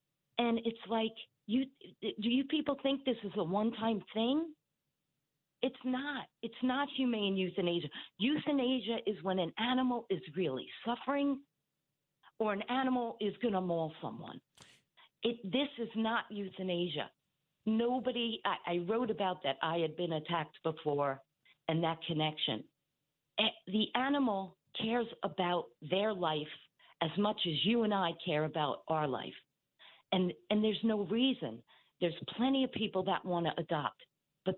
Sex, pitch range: female, 170-235 Hz